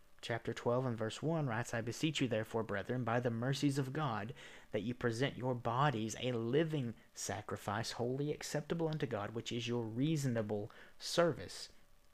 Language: English